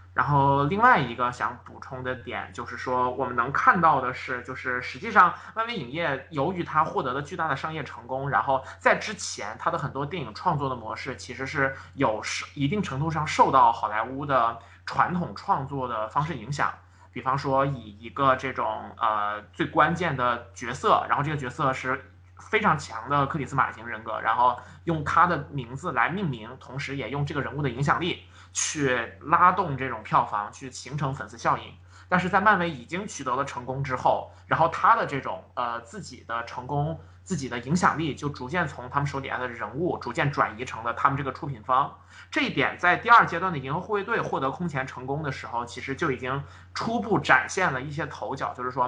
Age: 20-39